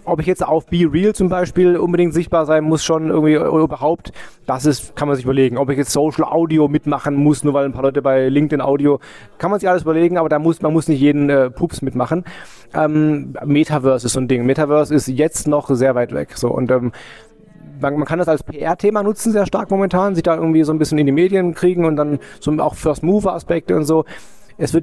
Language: German